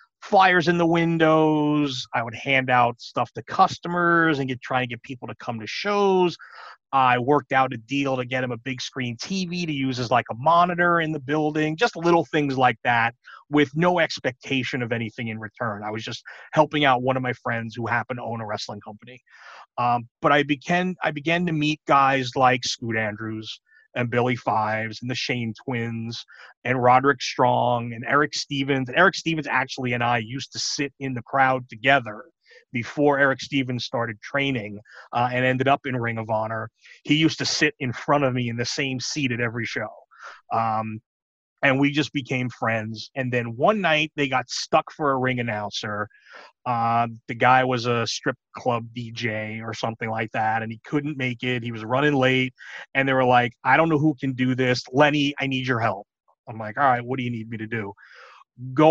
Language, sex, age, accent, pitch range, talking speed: English, male, 30-49, American, 115-150 Hz, 205 wpm